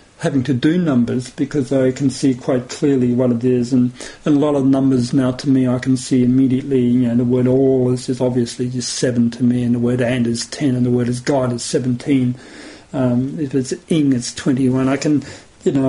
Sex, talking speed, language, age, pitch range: male, 235 wpm, English, 50-69, 130-190 Hz